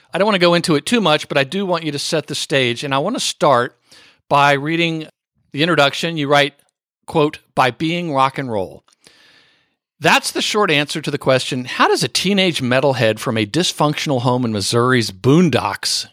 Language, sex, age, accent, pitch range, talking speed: English, male, 50-69, American, 130-175 Hz, 200 wpm